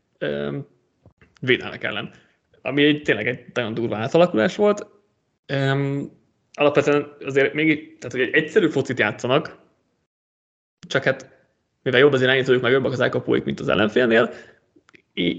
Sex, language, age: male, Hungarian, 20-39